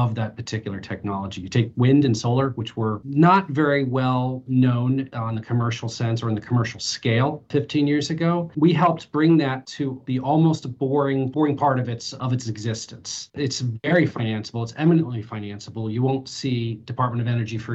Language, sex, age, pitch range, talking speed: English, male, 40-59, 115-140 Hz, 185 wpm